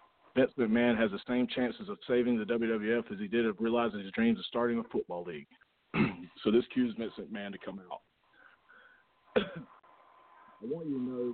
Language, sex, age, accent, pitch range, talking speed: English, male, 40-59, American, 110-145 Hz, 185 wpm